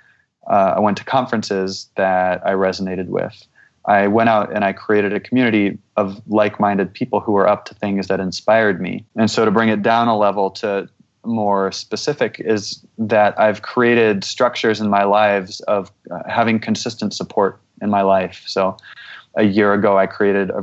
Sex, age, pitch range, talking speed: male, 20-39, 95-110 Hz, 180 wpm